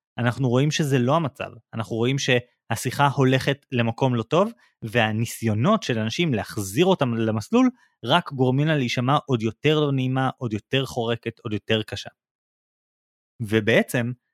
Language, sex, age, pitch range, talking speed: Hebrew, male, 30-49, 115-165 Hz, 140 wpm